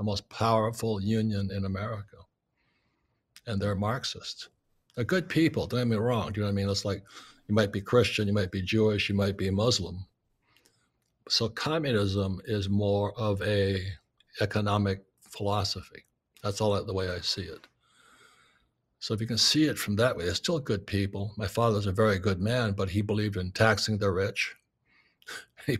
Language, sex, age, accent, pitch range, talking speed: English, male, 60-79, American, 100-115 Hz, 180 wpm